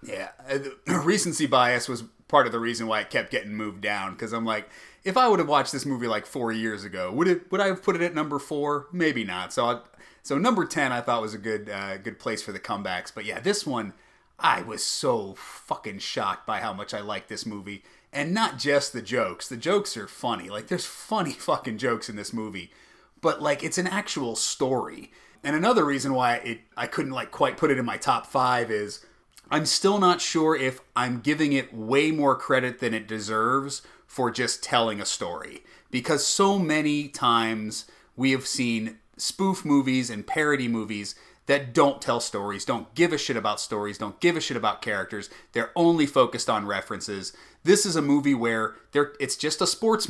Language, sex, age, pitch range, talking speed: English, male, 30-49, 110-155 Hz, 205 wpm